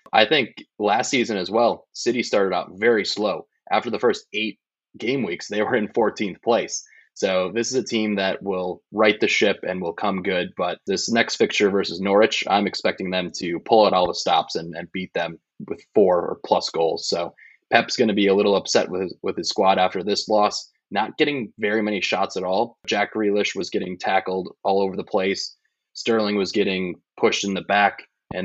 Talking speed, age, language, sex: 210 wpm, 20-39, English, male